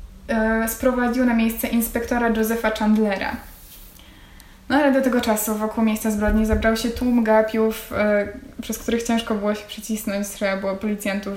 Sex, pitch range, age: female, 210-235 Hz, 10-29